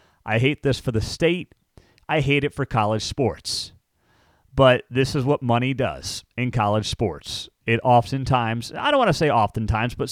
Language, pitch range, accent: English, 115-165 Hz, American